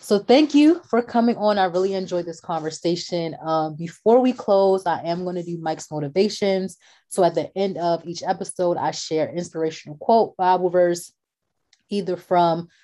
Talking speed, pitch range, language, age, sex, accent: 175 wpm, 160-190 Hz, English, 20-39, female, American